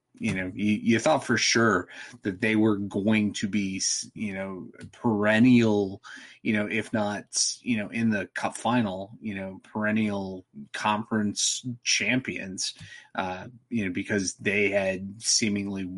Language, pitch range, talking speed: English, 95-110 Hz, 145 wpm